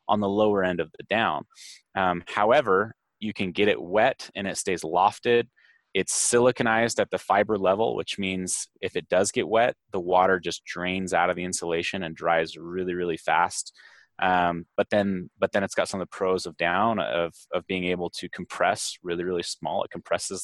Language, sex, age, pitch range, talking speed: English, male, 20-39, 90-105 Hz, 200 wpm